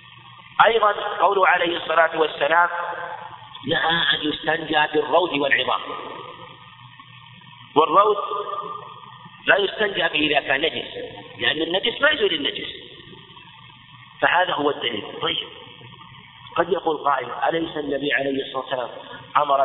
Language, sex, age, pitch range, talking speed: Arabic, male, 50-69, 140-175 Hz, 105 wpm